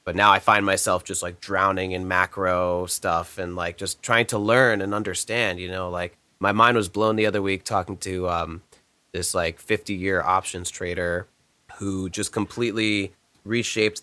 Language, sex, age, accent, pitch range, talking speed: English, male, 30-49, American, 95-115 Hz, 180 wpm